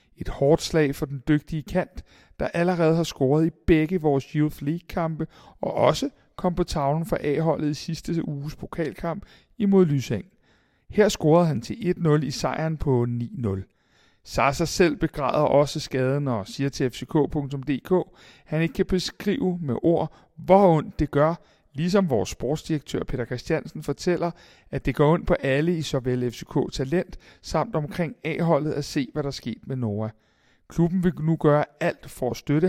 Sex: male